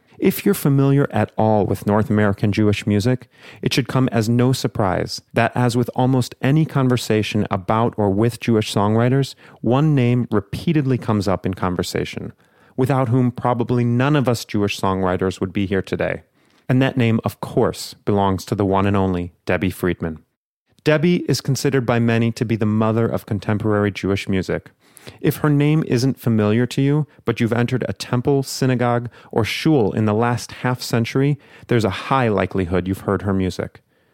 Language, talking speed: English, 175 wpm